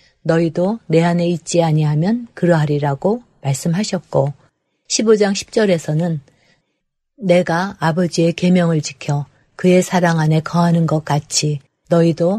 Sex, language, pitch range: female, Korean, 155-190 Hz